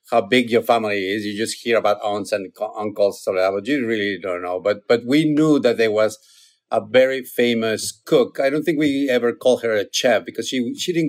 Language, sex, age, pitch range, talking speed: English, male, 50-69, 110-150 Hz, 240 wpm